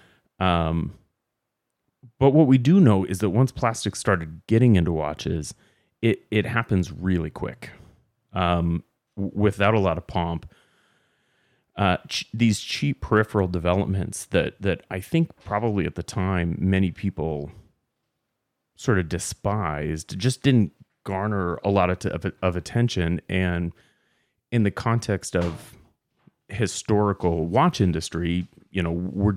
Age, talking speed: 30-49, 130 wpm